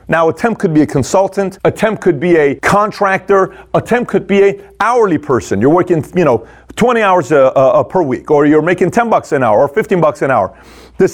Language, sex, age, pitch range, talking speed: English, male, 40-59, 145-195 Hz, 235 wpm